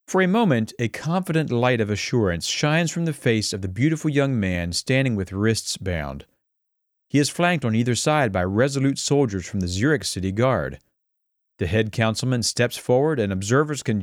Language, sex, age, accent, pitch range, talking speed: English, male, 40-59, American, 95-130 Hz, 185 wpm